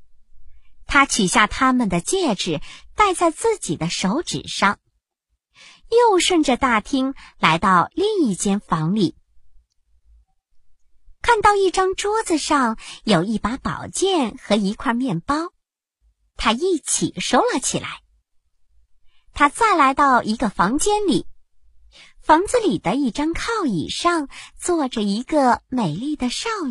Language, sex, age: Chinese, male, 50-69